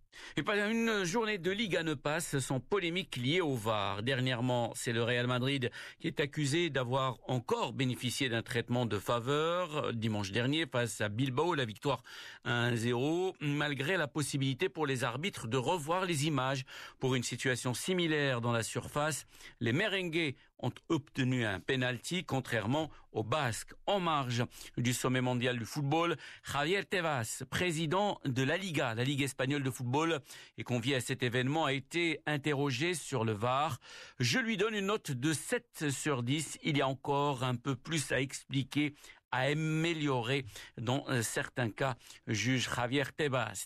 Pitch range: 125-160 Hz